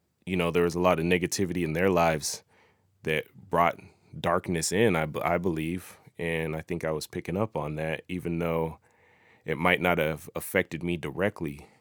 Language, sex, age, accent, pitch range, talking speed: English, male, 30-49, American, 85-95 Hz, 185 wpm